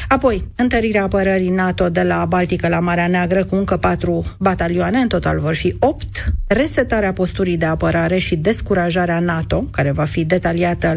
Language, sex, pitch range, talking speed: Romanian, female, 175-215 Hz, 165 wpm